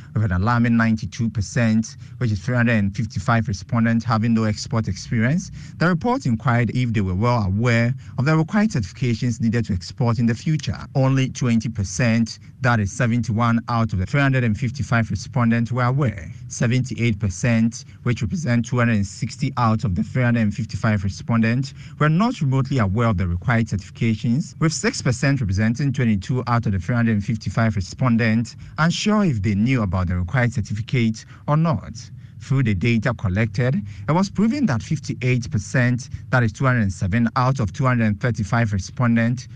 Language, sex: English, male